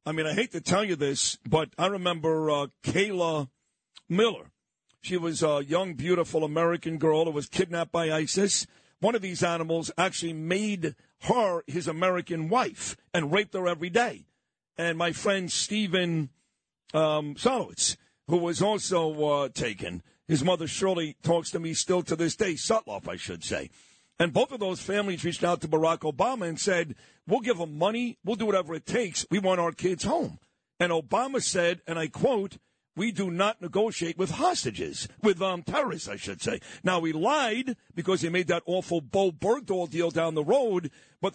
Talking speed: 180 wpm